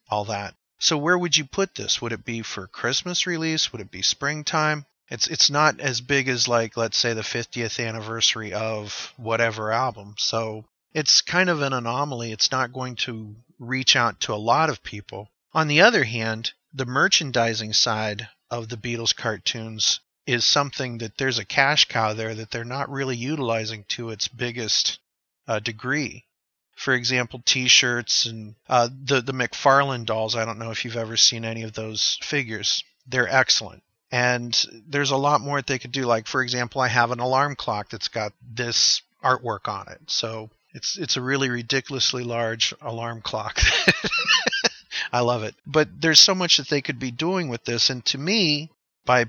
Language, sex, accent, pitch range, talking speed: English, male, American, 115-135 Hz, 185 wpm